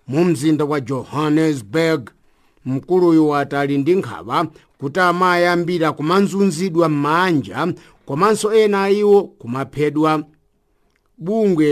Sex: male